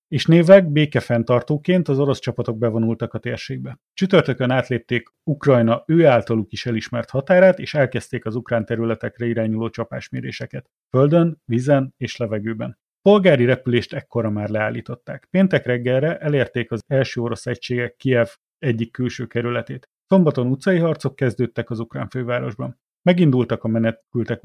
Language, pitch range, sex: Hungarian, 115-135 Hz, male